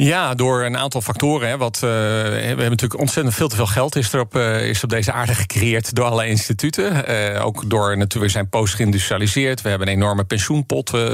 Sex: male